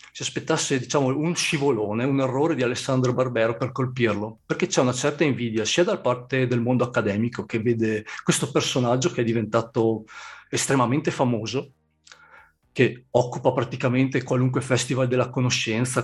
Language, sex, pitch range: Italian, male, 120-135 Hz